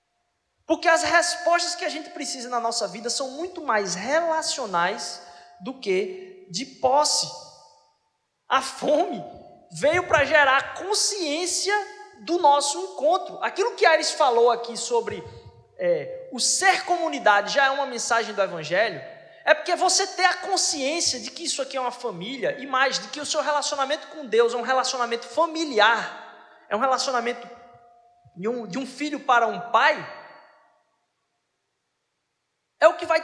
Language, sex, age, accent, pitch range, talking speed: Portuguese, male, 20-39, Brazilian, 240-330 Hz, 150 wpm